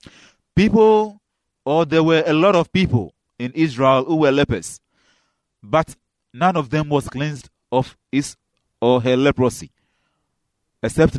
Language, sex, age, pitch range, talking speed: English, male, 30-49, 120-155 Hz, 135 wpm